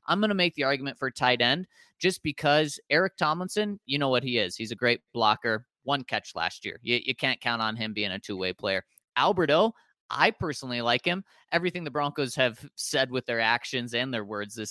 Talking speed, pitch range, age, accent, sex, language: 215 wpm, 115-160 Hz, 30-49, American, male, English